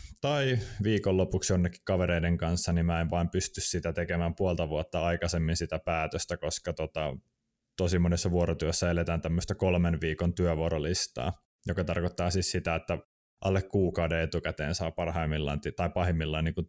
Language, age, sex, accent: Finnish, 20-39, male, native